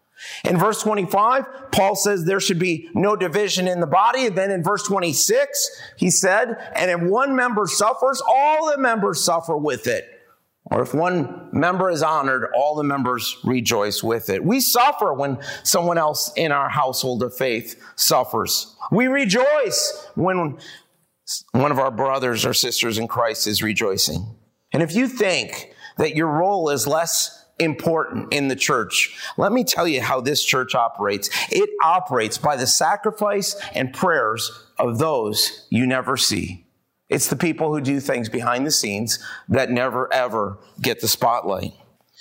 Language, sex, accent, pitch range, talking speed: English, male, American, 130-200 Hz, 165 wpm